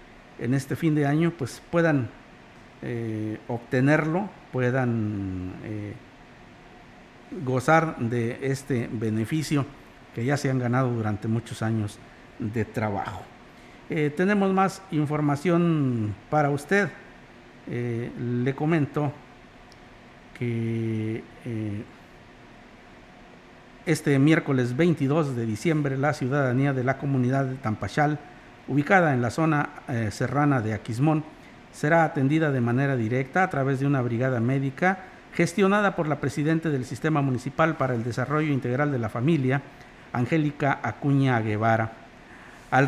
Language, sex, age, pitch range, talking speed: Spanish, male, 50-69, 120-155 Hz, 120 wpm